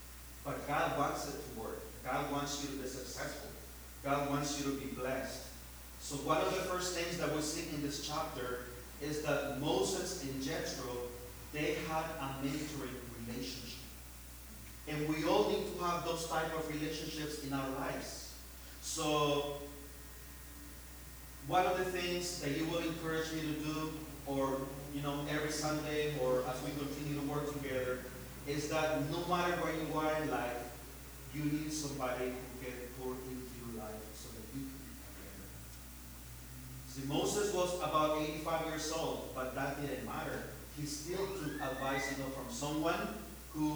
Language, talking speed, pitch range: English, 160 wpm, 125-155 Hz